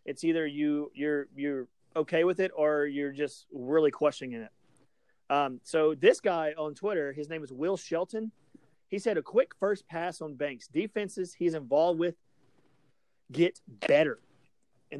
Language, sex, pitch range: English, male, 145-180 Hz